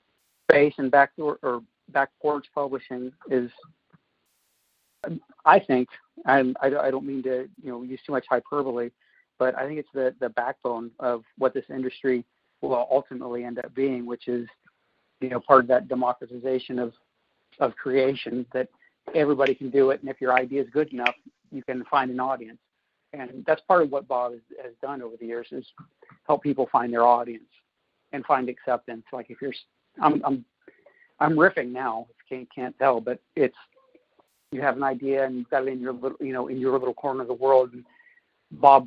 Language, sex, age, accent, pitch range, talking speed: English, male, 50-69, American, 125-140 Hz, 190 wpm